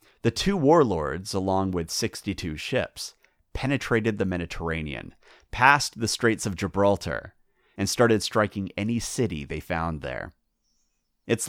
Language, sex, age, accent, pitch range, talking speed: English, male, 30-49, American, 85-110 Hz, 125 wpm